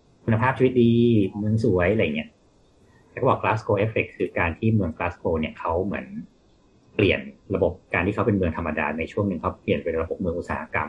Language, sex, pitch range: Thai, male, 85-110 Hz